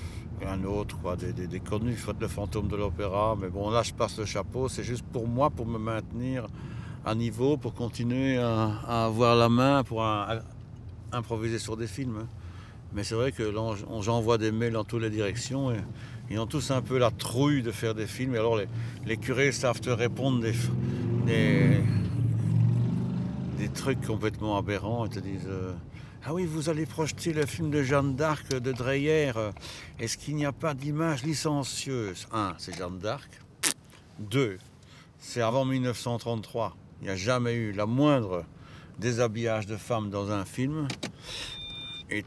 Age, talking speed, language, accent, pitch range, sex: 60-79, 180 wpm, French, French, 105-125 Hz, male